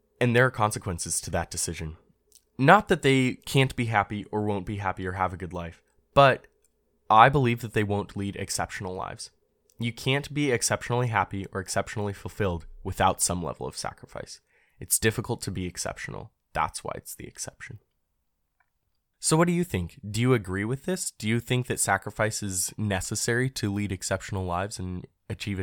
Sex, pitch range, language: male, 95-120 Hz, English